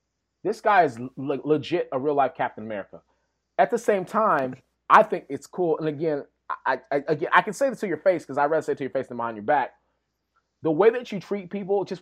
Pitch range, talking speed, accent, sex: 140-175 Hz, 240 wpm, American, male